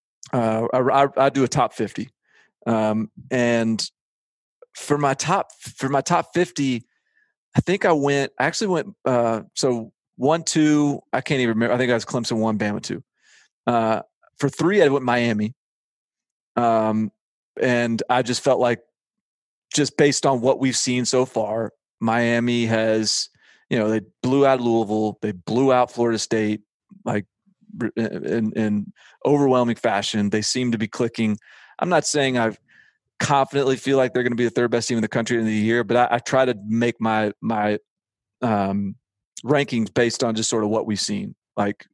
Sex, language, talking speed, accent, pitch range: male, English, 175 wpm, American, 110-140 Hz